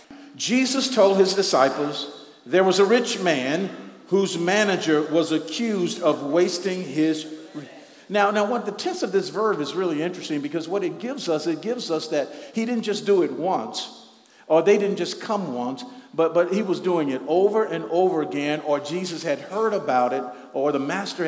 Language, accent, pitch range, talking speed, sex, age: English, American, 155-235 Hz, 190 wpm, male, 50-69